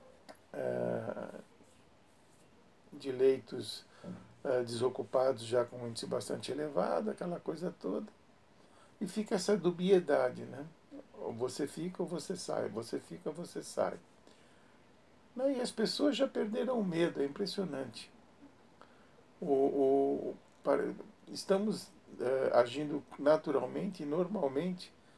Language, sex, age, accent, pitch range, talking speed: Portuguese, male, 60-79, Brazilian, 135-195 Hz, 115 wpm